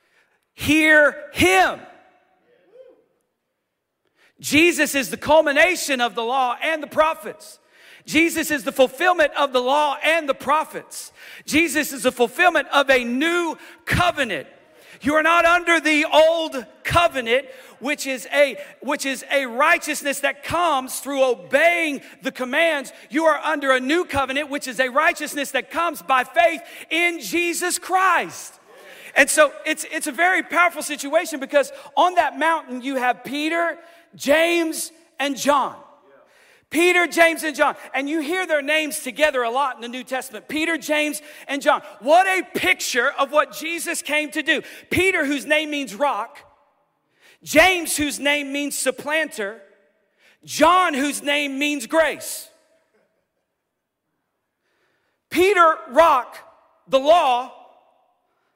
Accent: American